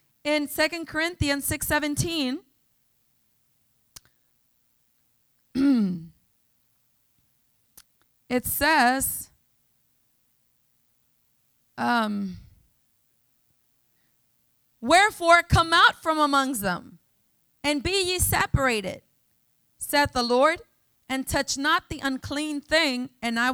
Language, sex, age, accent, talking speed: English, female, 20-39, American, 75 wpm